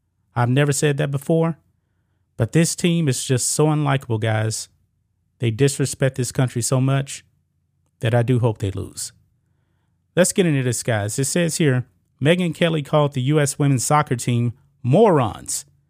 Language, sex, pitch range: English, male, 115-150 Hz